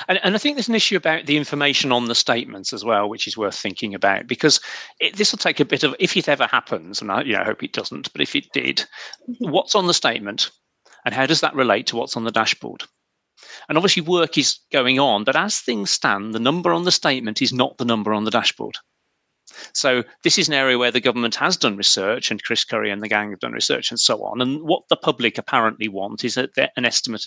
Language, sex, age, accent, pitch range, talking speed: English, male, 40-59, British, 120-170 Hz, 250 wpm